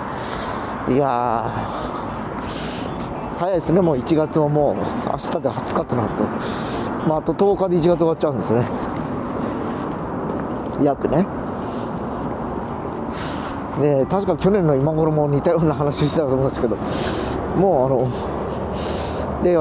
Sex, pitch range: male, 125-160 Hz